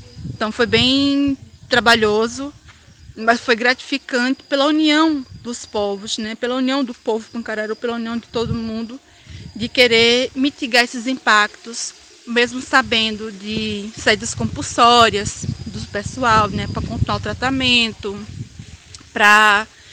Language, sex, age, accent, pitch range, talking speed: Portuguese, female, 20-39, Brazilian, 220-260 Hz, 120 wpm